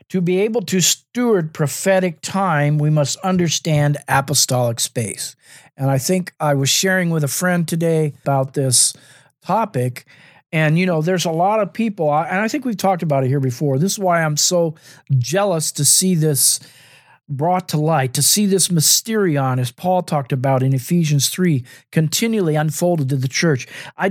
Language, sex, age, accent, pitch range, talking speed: English, male, 50-69, American, 140-175 Hz, 175 wpm